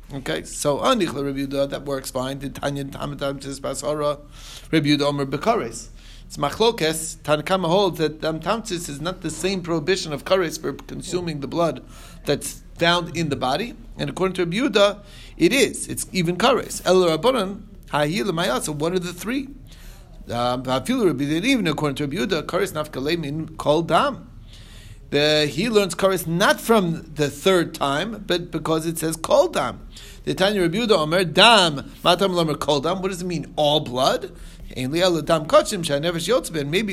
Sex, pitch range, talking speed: male, 145-185 Hz, 145 wpm